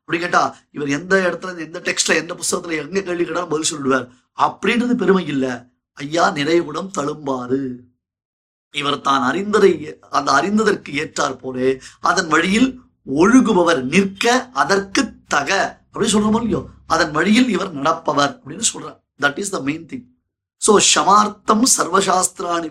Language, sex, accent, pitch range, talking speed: Tamil, male, native, 140-195 Hz, 55 wpm